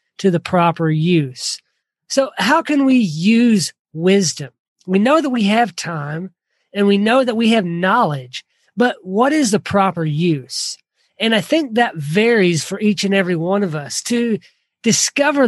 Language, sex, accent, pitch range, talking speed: English, male, American, 175-225 Hz, 165 wpm